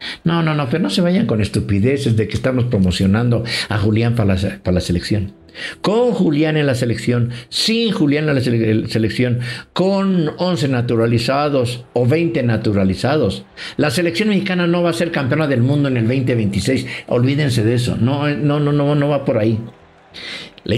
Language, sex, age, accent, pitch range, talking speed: English, male, 60-79, Mexican, 115-155 Hz, 175 wpm